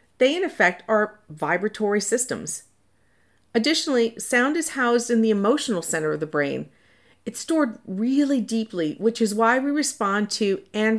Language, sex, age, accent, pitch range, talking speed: English, female, 50-69, American, 170-240 Hz, 155 wpm